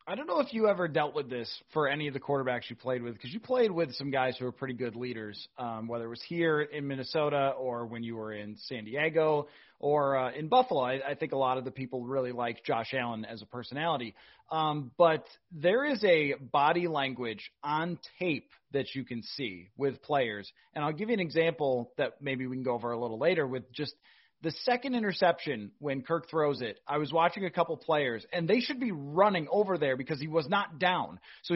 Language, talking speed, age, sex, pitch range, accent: English, 225 wpm, 30-49, male, 135-205 Hz, American